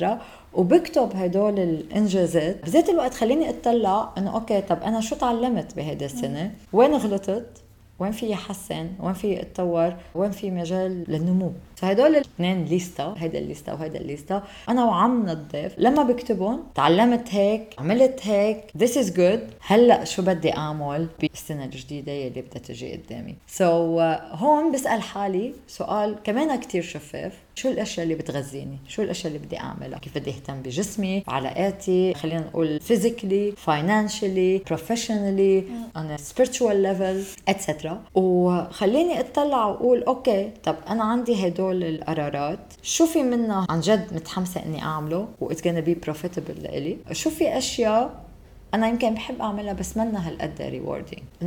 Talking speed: 140 wpm